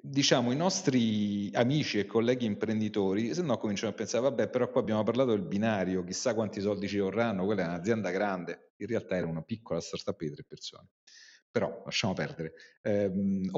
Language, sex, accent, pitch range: Italian, male, native, 90-125 Hz